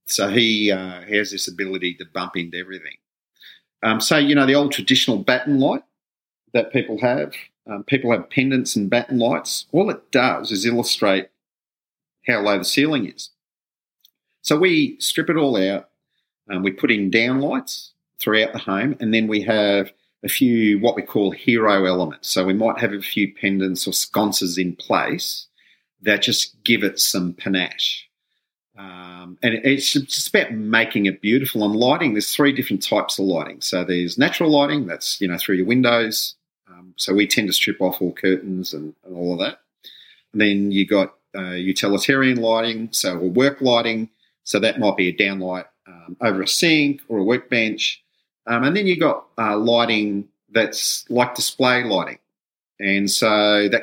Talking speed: 175 wpm